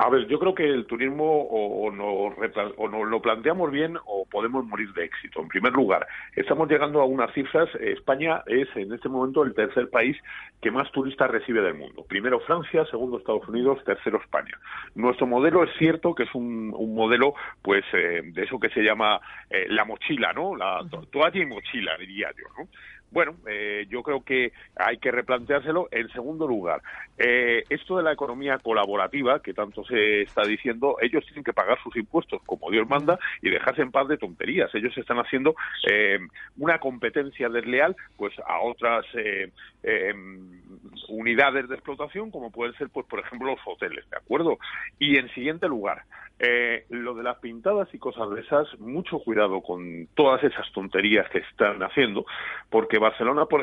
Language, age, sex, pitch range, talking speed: Spanish, 50-69, male, 115-150 Hz, 185 wpm